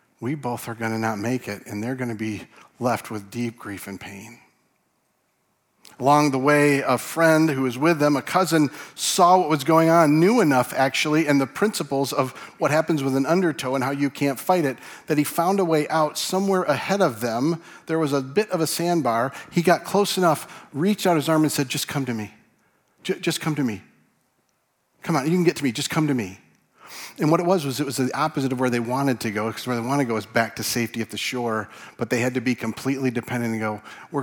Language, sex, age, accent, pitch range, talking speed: English, male, 40-59, American, 115-160 Hz, 240 wpm